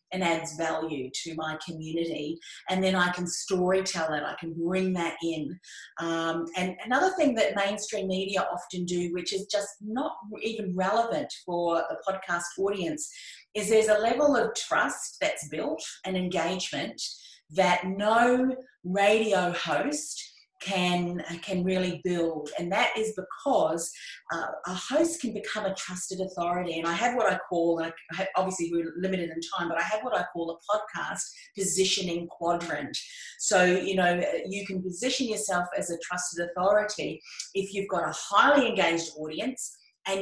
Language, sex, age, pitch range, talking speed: English, female, 30-49, 170-205 Hz, 160 wpm